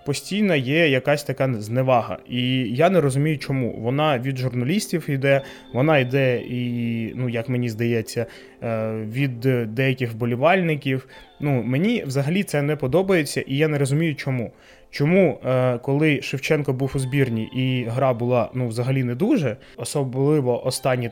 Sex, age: male, 20-39